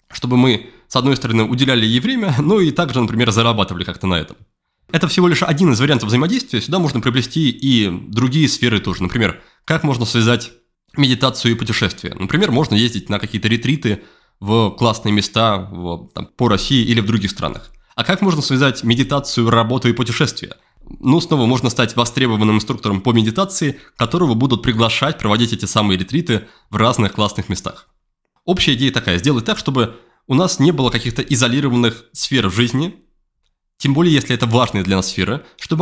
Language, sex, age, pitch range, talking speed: Russian, male, 20-39, 115-150 Hz, 175 wpm